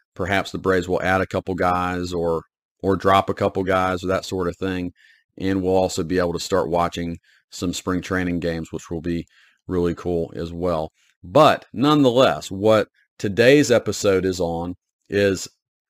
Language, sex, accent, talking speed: English, male, American, 175 wpm